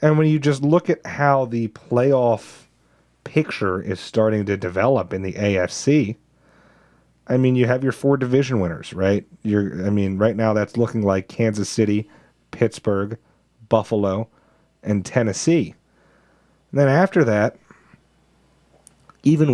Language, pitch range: English, 105-135 Hz